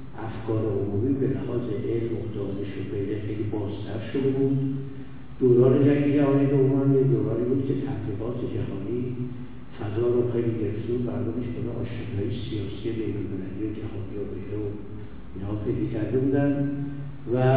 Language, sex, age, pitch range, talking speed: Persian, male, 60-79, 110-135 Hz, 115 wpm